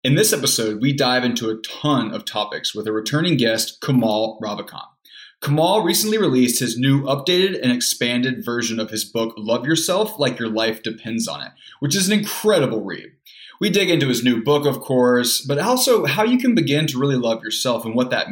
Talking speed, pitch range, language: 205 wpm, 115-150 Hz, English